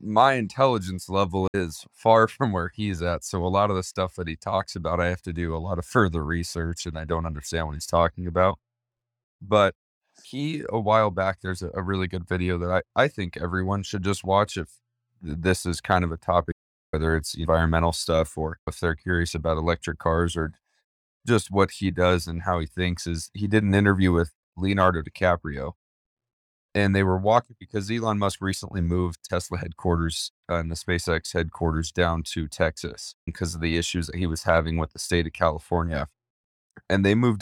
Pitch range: 85-100 Hz